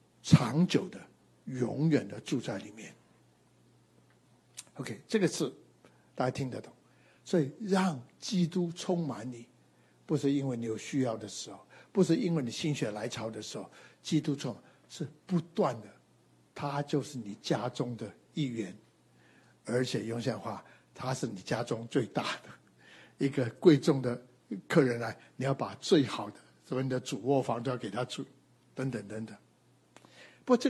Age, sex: 60-79, male